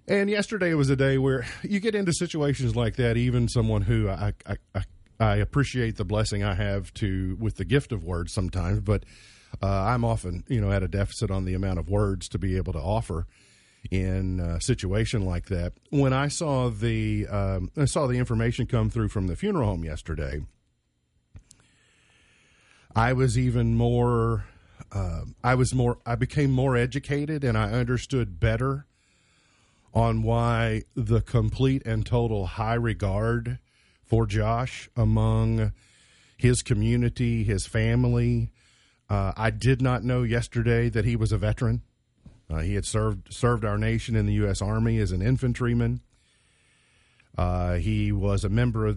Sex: male